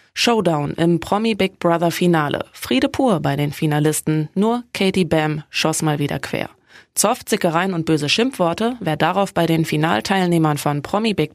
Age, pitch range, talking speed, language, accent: 20-39, 160-195 Hz, 145 wpm, German, German